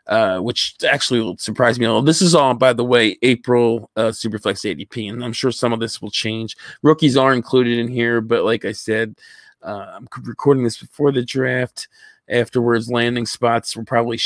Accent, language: American, English